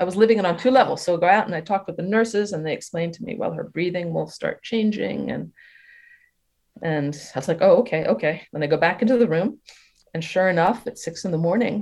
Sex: female